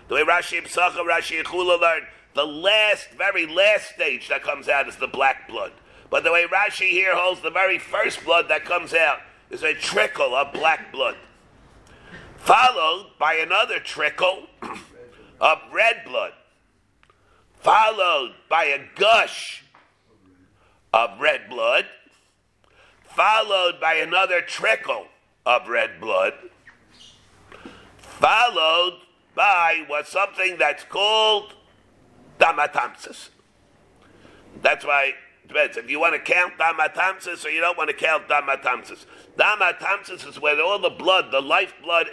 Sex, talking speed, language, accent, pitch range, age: male, 130 wpm, English, American, 160-190 Hz, 50-69